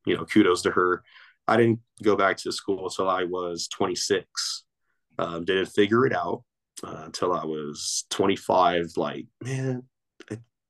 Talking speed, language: 155 wpm, English